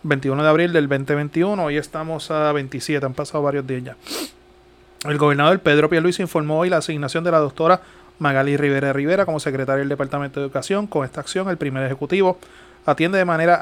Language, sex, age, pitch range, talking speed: Spanish, male, 30-49, 145-170 Hz, 190 wpm